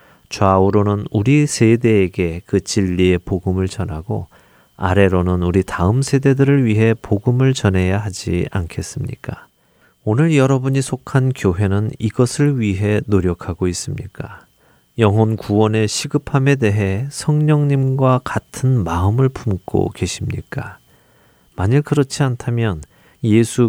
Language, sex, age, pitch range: Korean, male, 40-59, 95-125 Hz